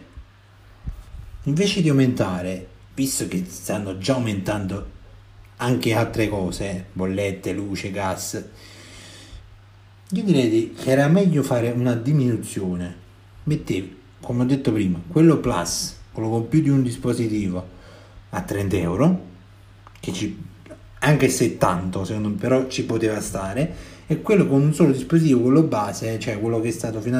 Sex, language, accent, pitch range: male, Italian, native, 95-120 Hz